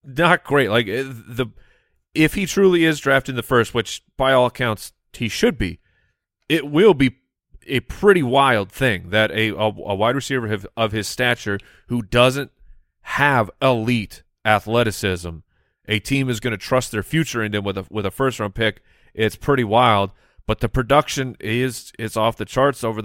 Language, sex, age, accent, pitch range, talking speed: English, male, 30-49, American, 105-130 Hz, 170 wpm